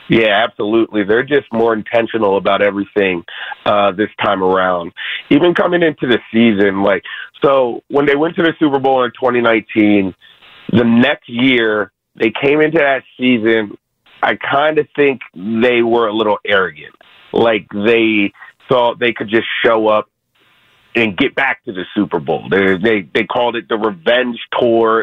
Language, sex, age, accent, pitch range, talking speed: English, male, 30-49, American, 105-130 Hz, 165 wpm